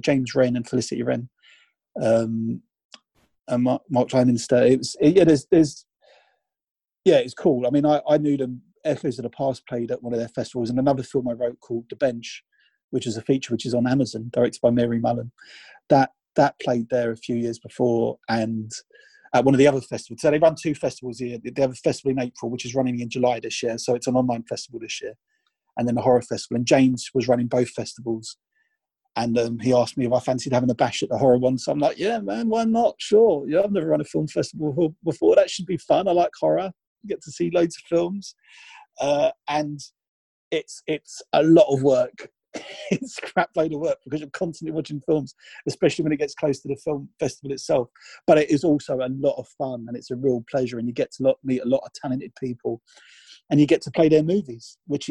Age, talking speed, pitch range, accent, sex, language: 30-49, 230 wpm, 120-155 Hz, British, male, English